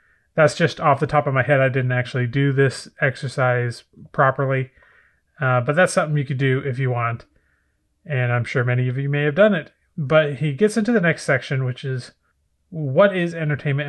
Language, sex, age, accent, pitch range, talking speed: English, male, 30-49, American, 130-165 Hz, 205 wpm